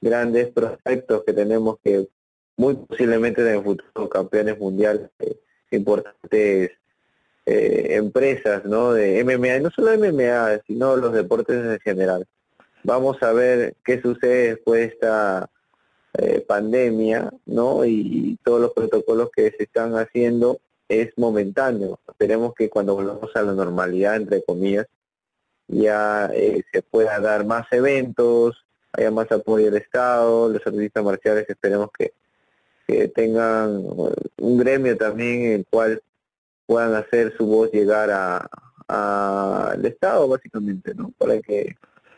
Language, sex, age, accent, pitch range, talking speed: Spanish, male, 30-49, Argentinian, 110-140 Hz, 135 wpm